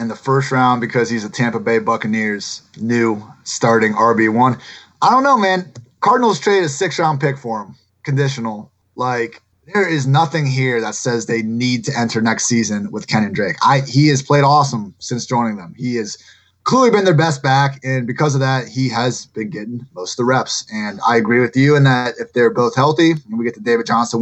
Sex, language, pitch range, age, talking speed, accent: male, English, 115-145 Hz, 30-49, 210 wpm, American